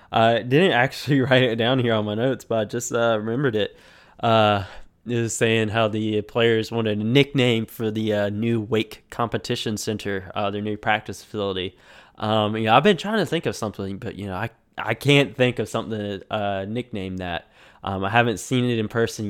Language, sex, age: English, male, 10-29